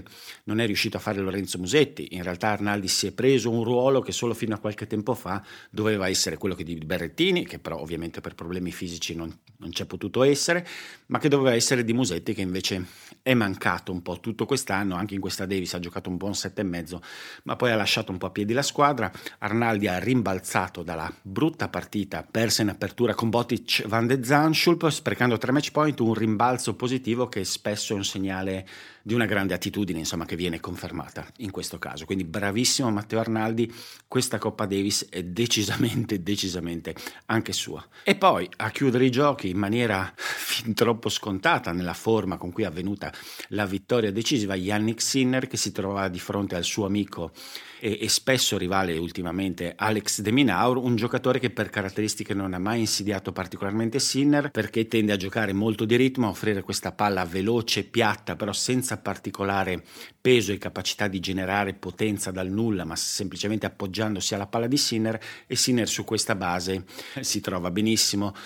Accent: native